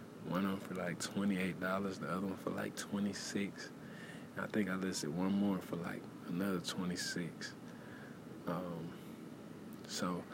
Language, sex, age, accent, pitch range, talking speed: English, male, 20-39, American, 90-105 Hz, 145 wpm